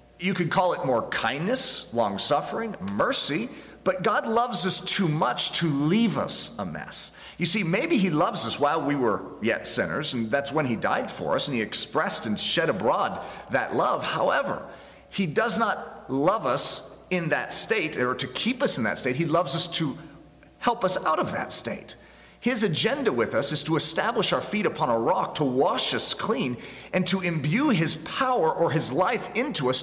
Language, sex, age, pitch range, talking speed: English, male, 40-59, 145-205 Hz, 195 wpm